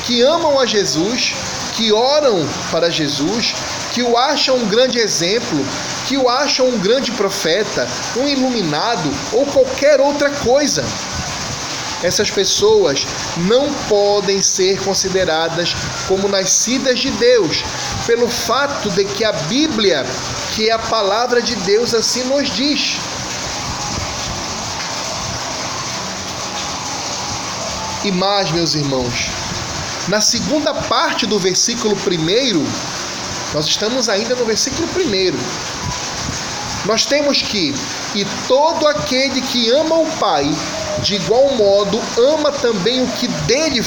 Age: 20-39